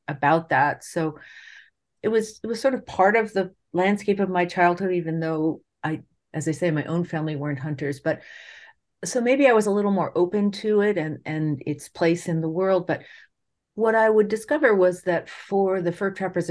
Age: 50-69